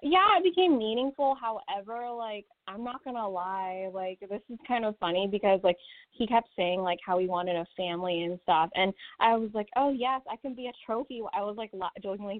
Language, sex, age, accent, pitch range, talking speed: English, female, 10-29, American, 180-230 Hz, 215 wpm